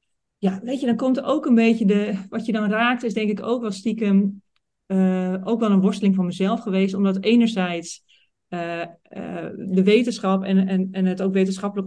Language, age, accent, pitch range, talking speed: Dutch, 40-59, Dutch, 185-225 Hz, 200 wpm